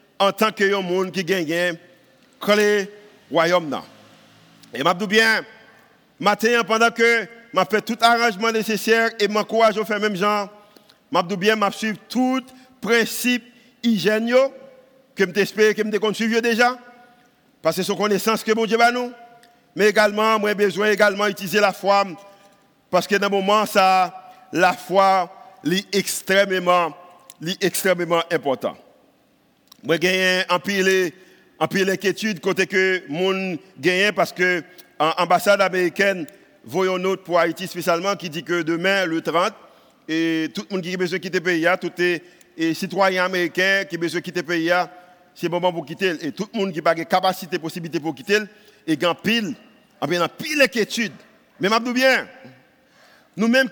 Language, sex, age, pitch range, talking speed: French, male, 50-69, 180-220 Hz, 150 wpm